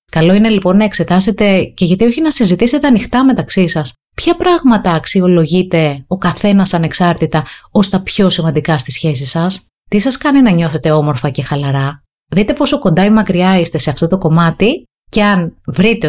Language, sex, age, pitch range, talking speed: Greek, female, 30-49, 150-205 Hz, 175 wpm